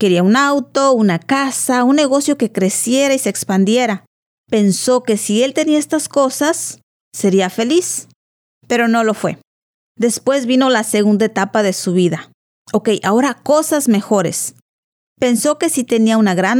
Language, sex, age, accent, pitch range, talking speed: English, female, 40-59, American, 205-260 Hz, 155 wpm